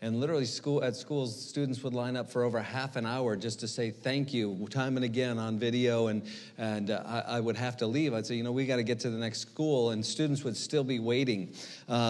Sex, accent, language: male, American, English